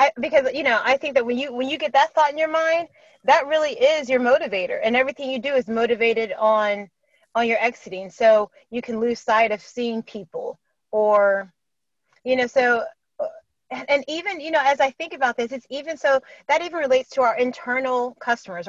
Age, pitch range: 30-49, 230-290 Hz